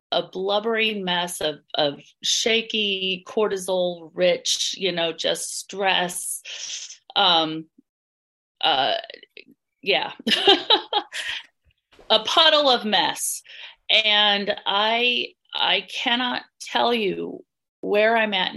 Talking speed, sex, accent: 90 wpm, female, American